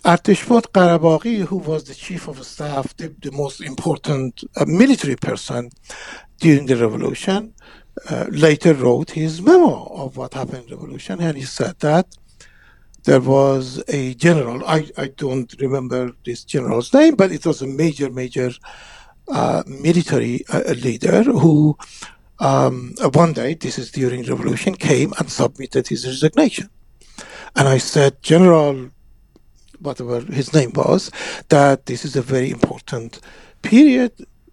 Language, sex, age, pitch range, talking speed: English, male, 60-79, 140-185 Hz, 135 wpm